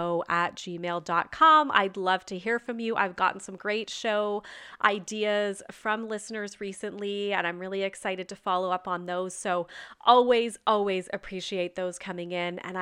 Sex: female